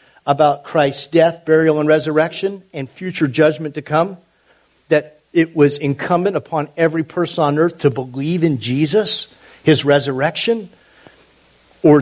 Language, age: English, 50-69